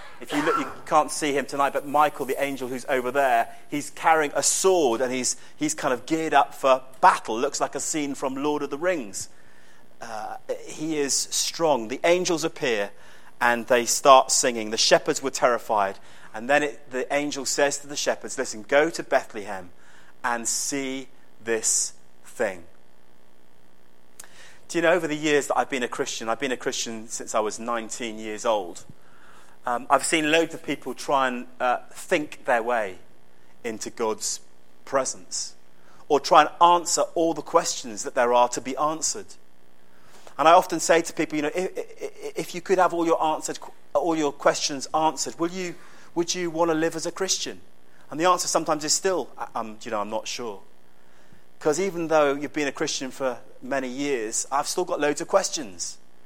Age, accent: 30-49, British